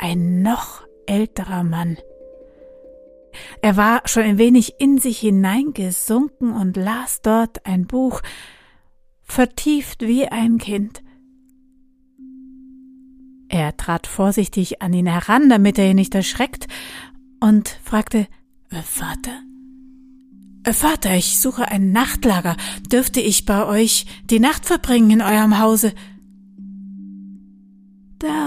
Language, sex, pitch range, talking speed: German, female, 195-245 Hz, 105 wpm